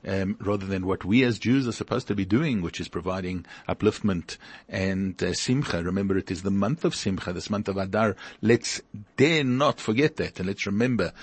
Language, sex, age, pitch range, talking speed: English, male, 50-69, 95-115 Hz, 205 wpm